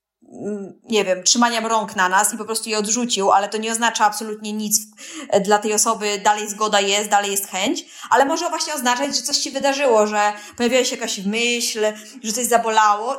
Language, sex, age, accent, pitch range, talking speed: Polish, female, 20-39, native, 205-245 Hz, 190 wpm